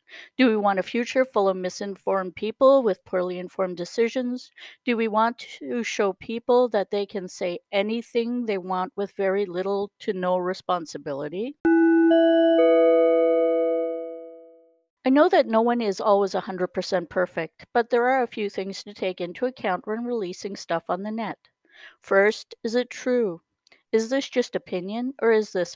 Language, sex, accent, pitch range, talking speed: English, female, American, 185-240 Hz, 160 wpm